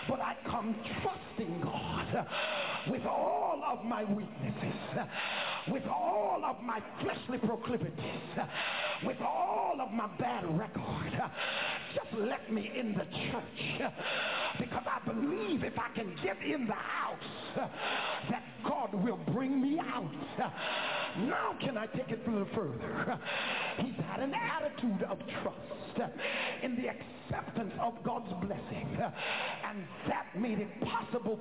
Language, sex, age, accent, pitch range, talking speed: English, male, 50-69, American, 210-260 Hz, 145 wpm